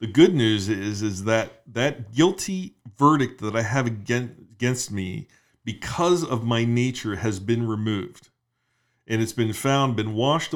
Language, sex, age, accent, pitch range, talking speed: English, male, 40-59, American, 110-140 Hz, 155 wpm